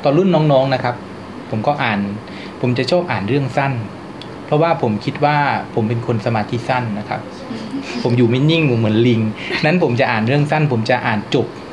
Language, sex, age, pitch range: Thai, male, 20-39, 115-150 Hz